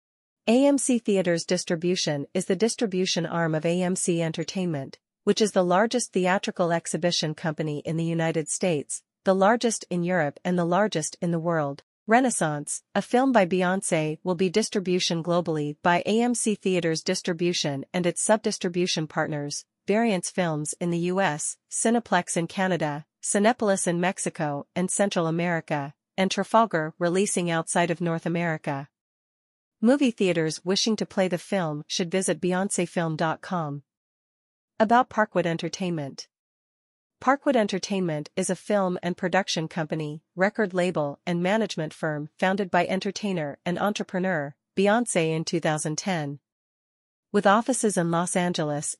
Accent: American